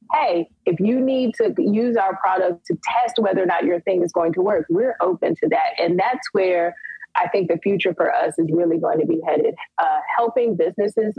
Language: English